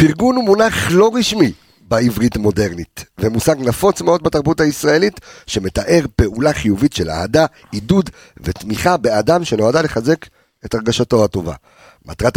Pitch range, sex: 105-160 Hz, male